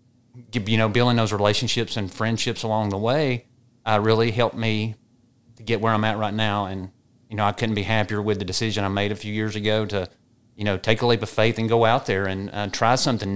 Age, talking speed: 30-49, 240 wpm